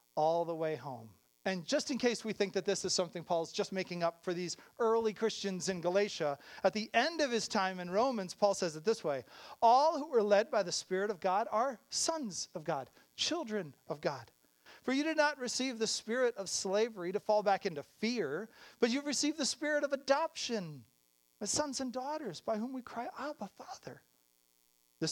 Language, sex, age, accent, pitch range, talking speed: English, male, 40-59, American, 140-230 Hz, 205 wpm